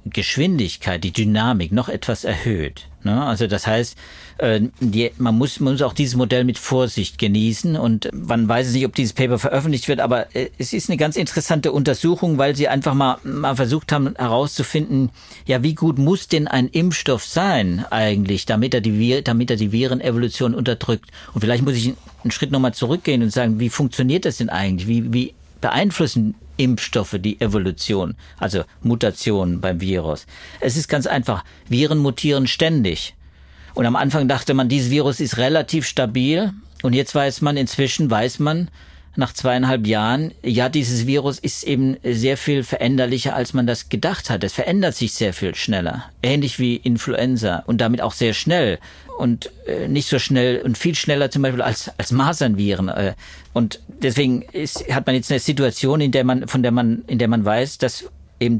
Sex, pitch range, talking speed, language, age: male, 115-140 Hz, 175 wpm, German, 50-69